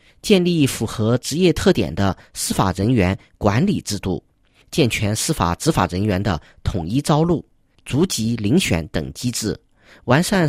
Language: Chinese